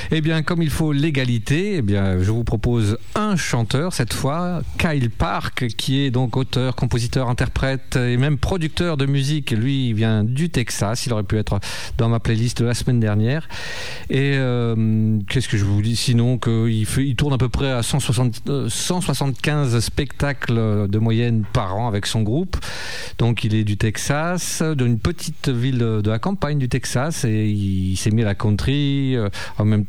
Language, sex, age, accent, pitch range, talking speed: French, male, 40-59, French, 110-140 Hz, 190 wpm